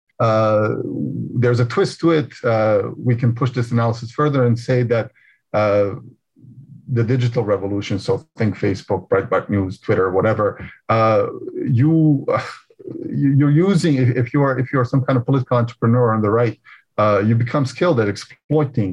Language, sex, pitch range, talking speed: English, male, 110-130 Hz, 165 wpm